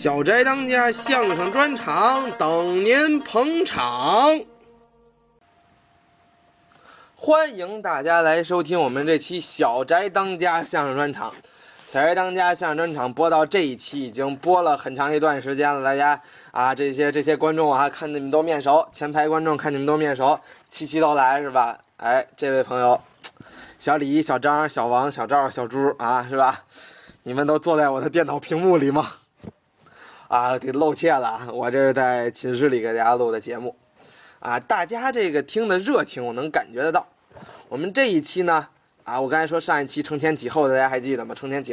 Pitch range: 135-180 Hz